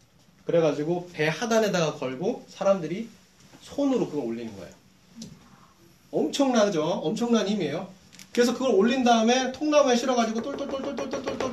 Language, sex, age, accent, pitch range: Korean, male, 30-49, native, 170-235 Hz